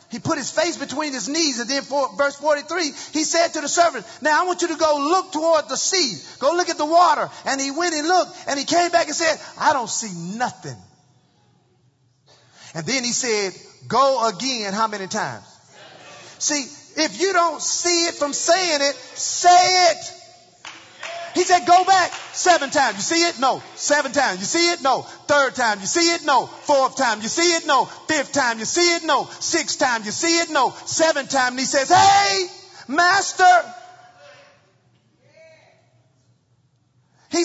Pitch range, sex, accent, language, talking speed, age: 265-350 Hz, male, American, English, 185 wpm, 40-59